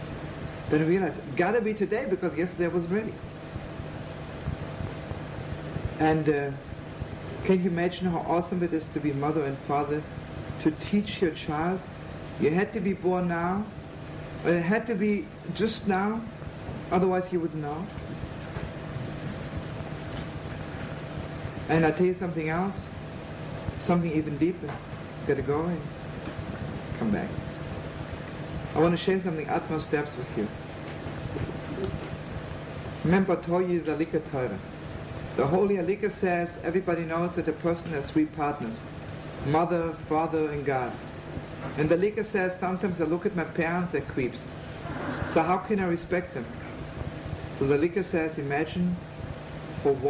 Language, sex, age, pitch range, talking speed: English, male, 60-79, 150-180 Hz, 130 wpm